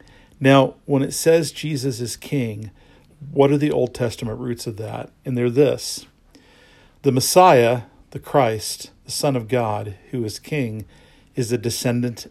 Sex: male